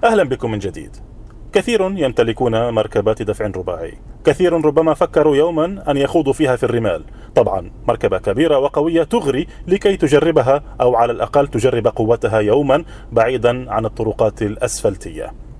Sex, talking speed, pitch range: male, 135 wpm, 110-145 Hz